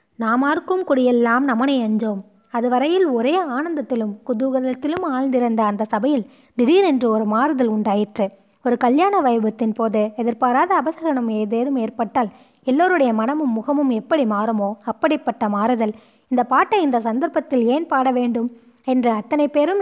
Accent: native